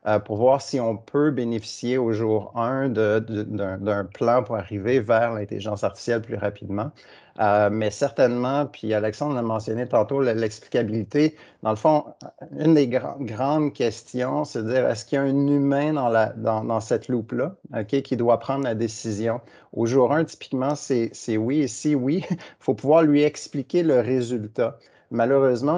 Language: French